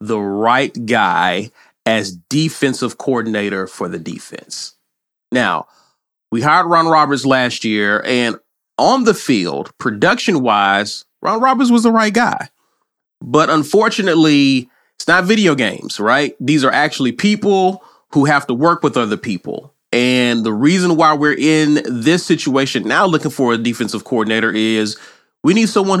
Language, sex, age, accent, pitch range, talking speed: English, male, 30-49, American, 115-155 Hz, 145 wpm